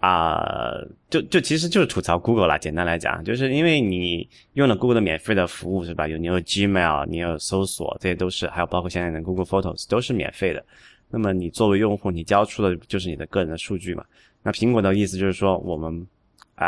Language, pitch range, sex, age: Chinese, 90-115 Hz, male, 20-39